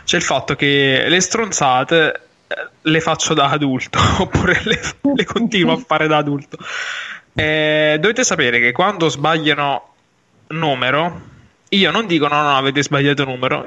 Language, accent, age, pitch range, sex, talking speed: Italian, native, 20-39, 140-205 Hz, male, 145 wpm